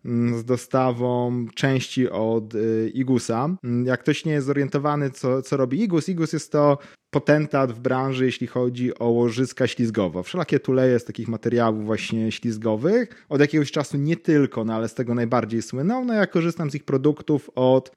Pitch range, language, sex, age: 115-150 Hz, Polish, male, 30-49